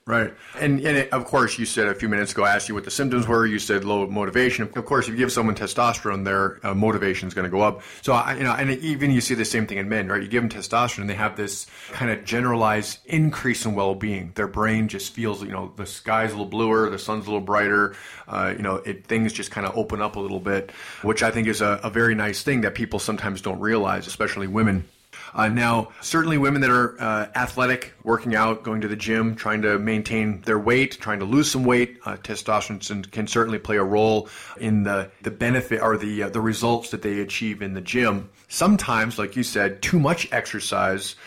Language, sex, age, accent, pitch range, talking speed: English, male, 30-49, American, 105-120 Hz, 240 wpm